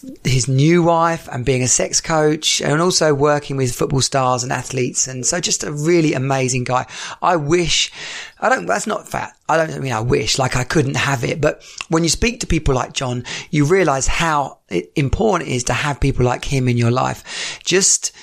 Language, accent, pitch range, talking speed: English, British, 135-155 Hz, 205 wpm